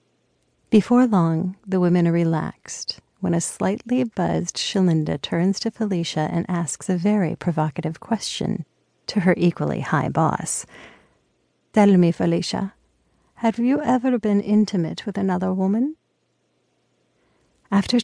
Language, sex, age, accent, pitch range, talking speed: English, female, 40-59, American, 170-215 Hz, 125 wpm